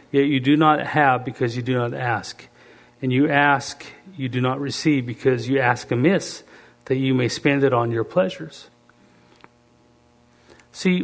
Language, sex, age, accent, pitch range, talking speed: English, male, 50-69, American, 125-155 Hz, 165 wpm